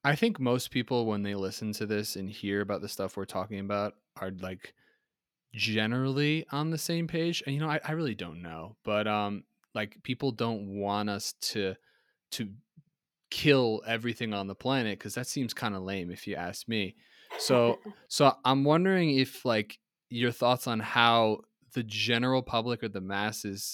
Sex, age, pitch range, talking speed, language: male, 20-39, 100-125 Hz, 180 wpm, English